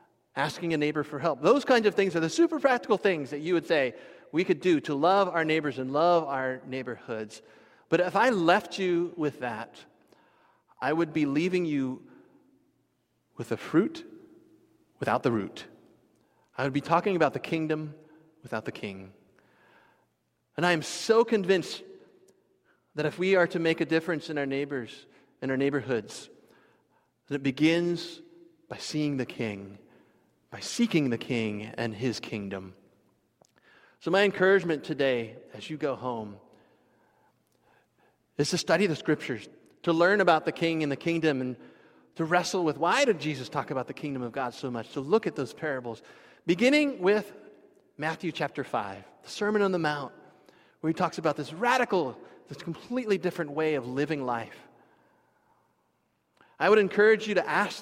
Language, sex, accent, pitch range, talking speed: English, male, American, 135-190 Hz, 165 wpm